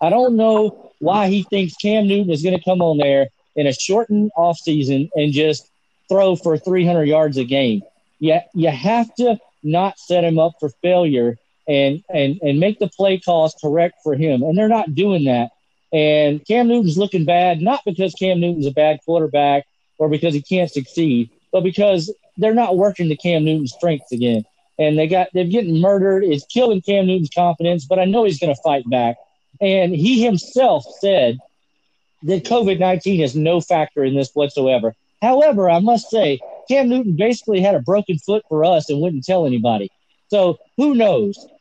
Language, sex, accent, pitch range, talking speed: English, male, American, 155-205 Hz, 185 wpm